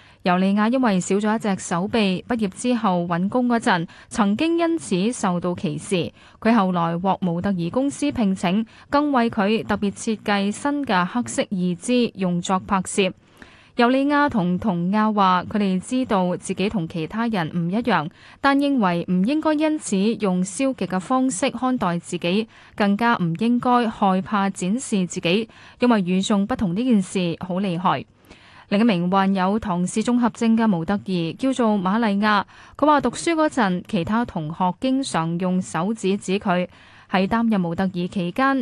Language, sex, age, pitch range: Chinese, female, 10-29, 185-240 Hz